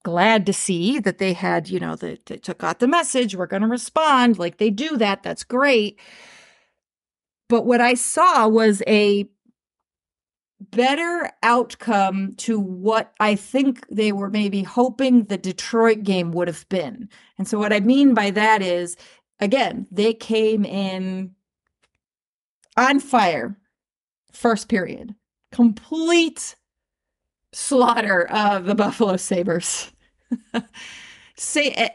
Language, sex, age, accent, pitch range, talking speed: English, female, 40-59, American, 200-245 Hz, 130 wpm